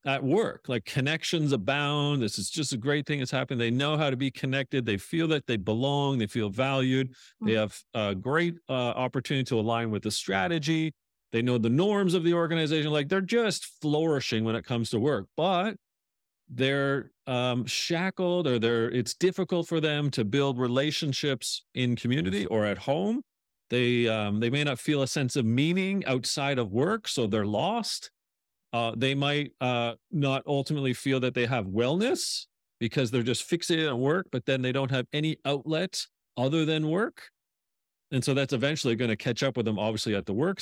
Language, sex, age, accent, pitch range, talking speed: English, male, 40-59, American, 115-150 Hz, 190 wpm